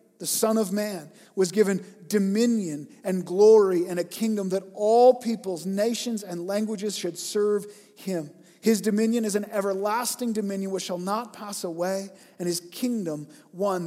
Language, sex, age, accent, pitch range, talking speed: English, male, 40-59, American, 185-230 Hz, 155 wpm